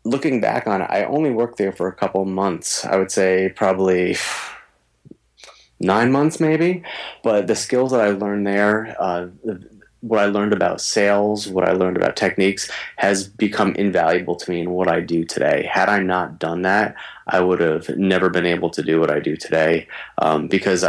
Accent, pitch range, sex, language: American, 85-105 Hz, male, English